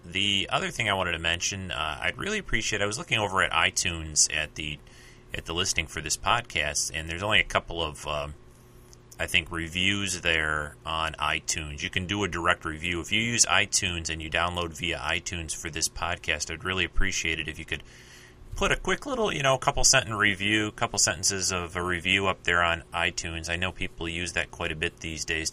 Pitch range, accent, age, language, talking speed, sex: 80-95 Hz, American, 30-49, English, 215 wpm, male